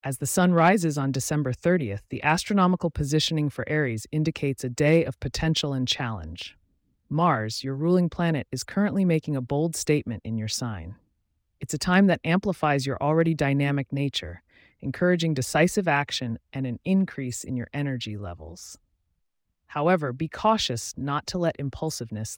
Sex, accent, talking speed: female, American, 155 wpm